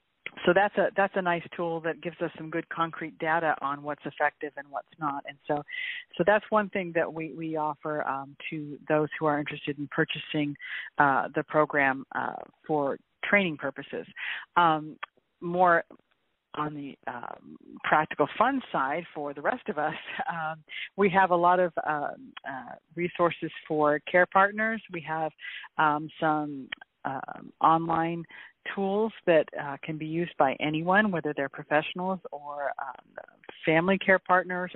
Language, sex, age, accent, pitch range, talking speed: English, female, 40-59, American, 150-180 Hz, 160 wpm